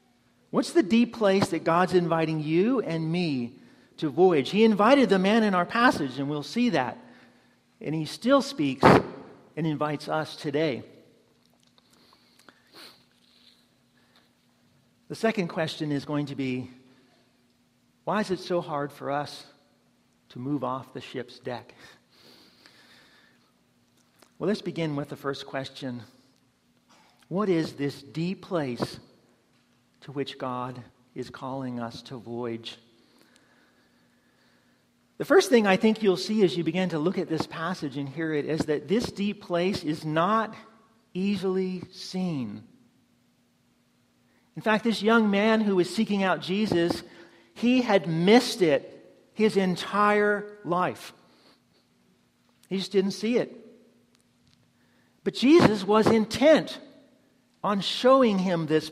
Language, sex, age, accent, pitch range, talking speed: English, male, 50-69, American, 140-205 Hz, 130 wpm